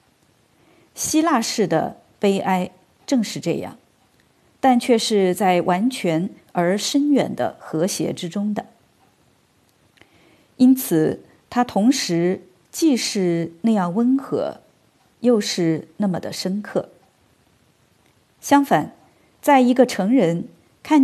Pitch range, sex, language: 180-245 Hz, female, Chinese